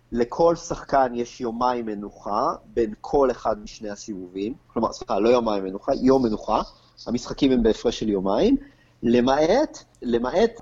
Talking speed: 135 wpm